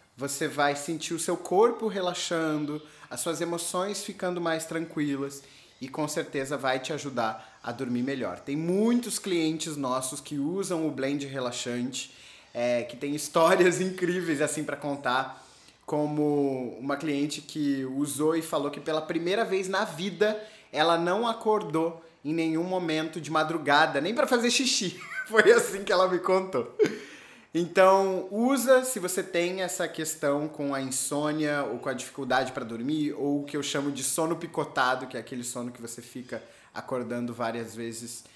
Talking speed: 165 wpm